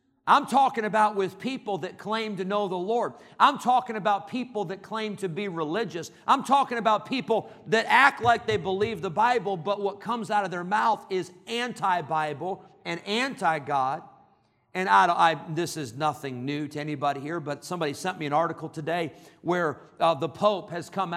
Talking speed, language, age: 185 wpm, English, 50-69